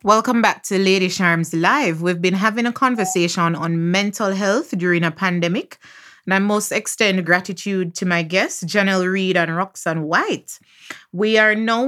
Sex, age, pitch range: female, 30-49, 175-210 Hz